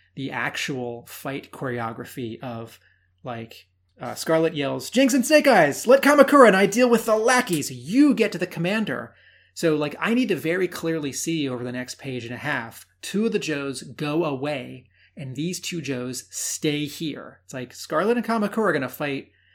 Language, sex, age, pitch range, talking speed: English, male, 30-49, 120-160 Hz, 190 wpm